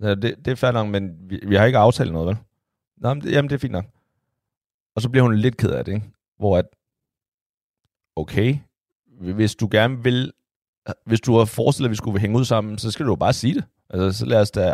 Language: Danish